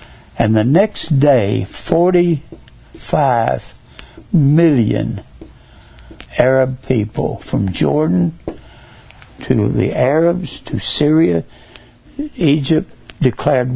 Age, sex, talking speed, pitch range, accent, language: 60-79, male, 75 wpm, 125-175 Hz, American, English